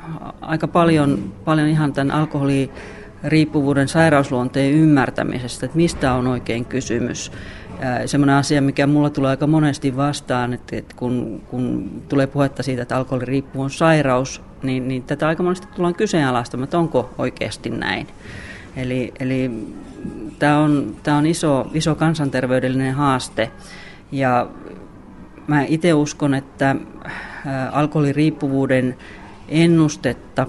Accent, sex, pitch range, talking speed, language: native, female, 130-150 Hz, 115 wpm, Finnish